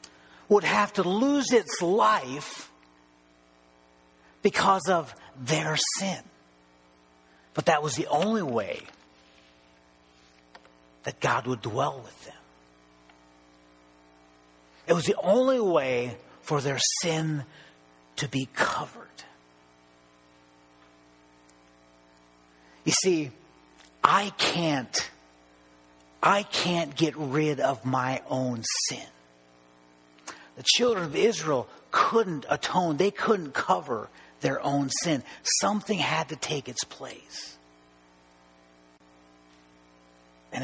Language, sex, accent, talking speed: English, male, American, 95 wpm